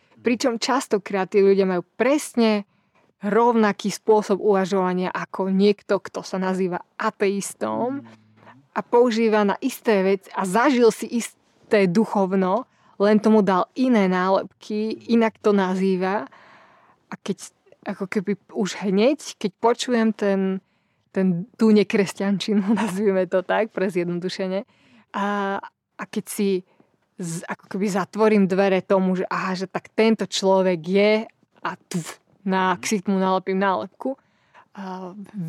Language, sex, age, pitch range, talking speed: Slovak, female, 20-39, 185-215 Hz, 125 wpm